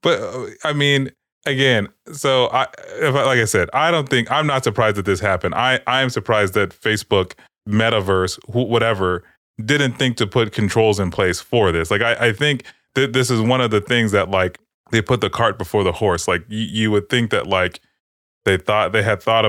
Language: English